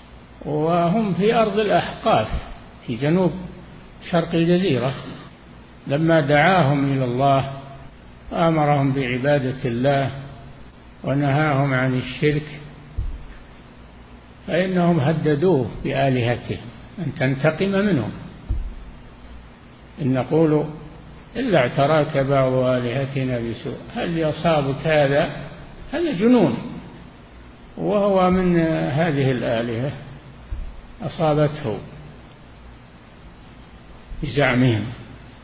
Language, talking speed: Arabic, 70 wpm